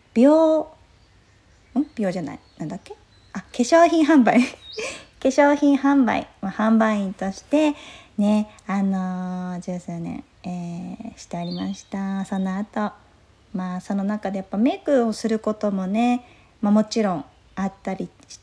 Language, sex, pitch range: Japanese, female, 180-230 Hz